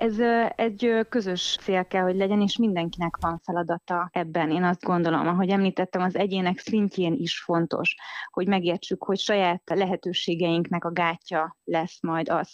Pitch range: 170-195 Hz